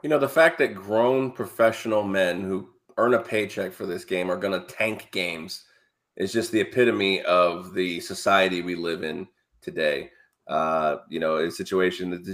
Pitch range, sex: 90-110 Hz, male